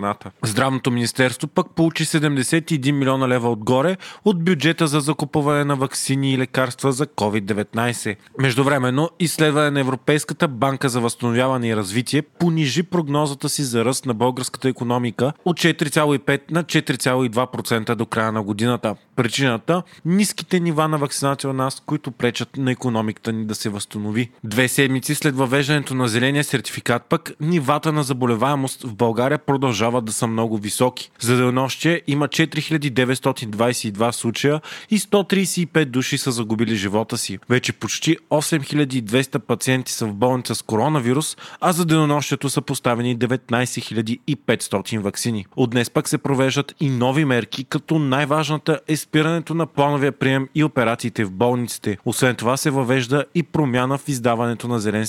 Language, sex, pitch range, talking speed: Bulgarian, male, 120-150 Hz, 145 wpm